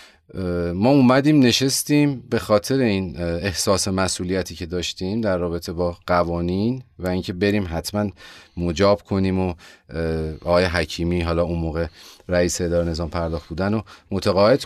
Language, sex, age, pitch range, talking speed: Persian, male, 30-49, 85-105 Hz, 135 wpm